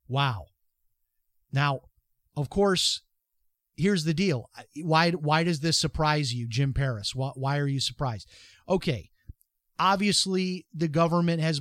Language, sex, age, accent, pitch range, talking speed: English, male, 40-59, American, 130-170 Hz, 130 wpm